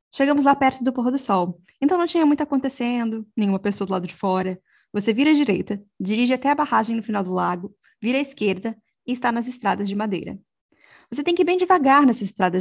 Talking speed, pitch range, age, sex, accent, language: 225 wpm, 200-275 Hz, 10-29, female, Brazilian, Portuguese